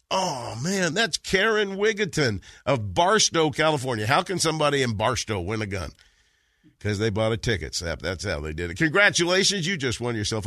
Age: 50-69